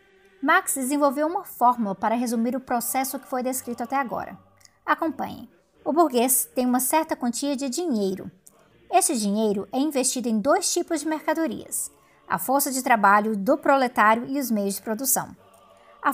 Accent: Brazilian